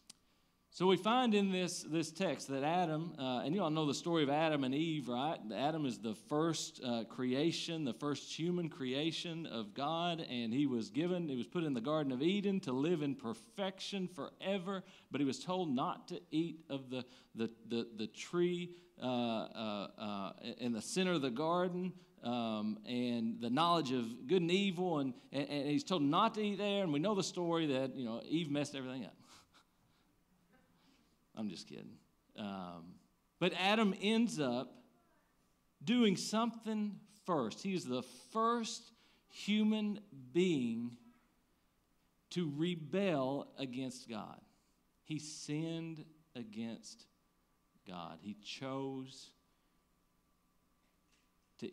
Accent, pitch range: American, 110-175 Hz